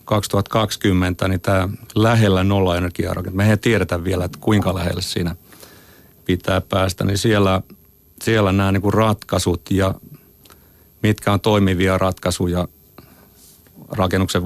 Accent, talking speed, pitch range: native, 120 wpm, 90-110 Hz